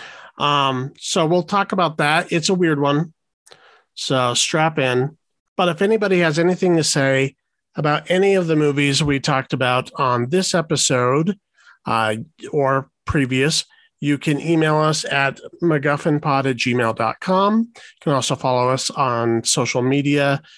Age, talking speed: 40-59, 145 wpm